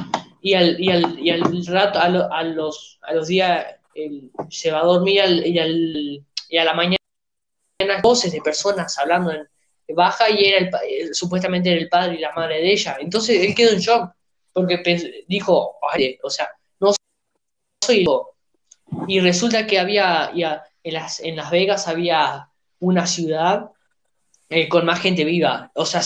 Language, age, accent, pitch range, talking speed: Spanish, 20-39, Argentinian, 160-200 Hz, 180 wpm